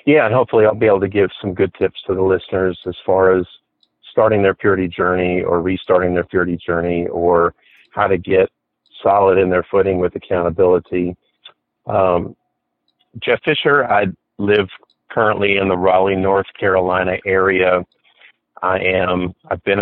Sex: male